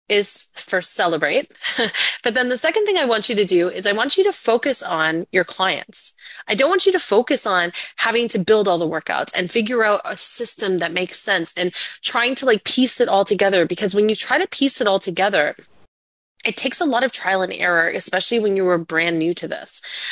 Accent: American